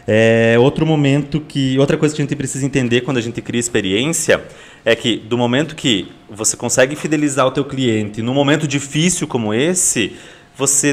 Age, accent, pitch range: 20-39, Brazilian, 120-145 Hz